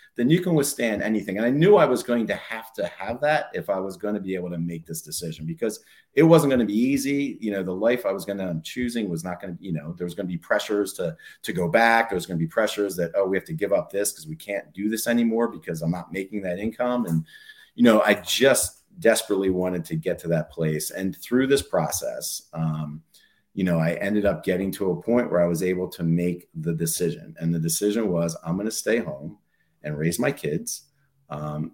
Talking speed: 250 wpm